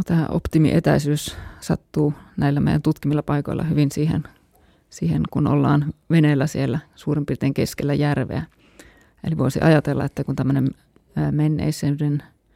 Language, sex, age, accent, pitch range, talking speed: Finnish, female, 30-49, native, 135-155 Hz, 120 wpm